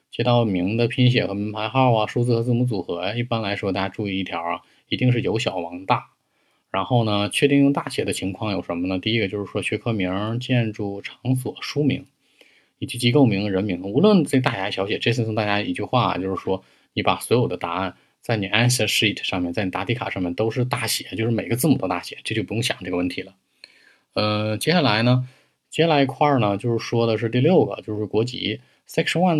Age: 20-39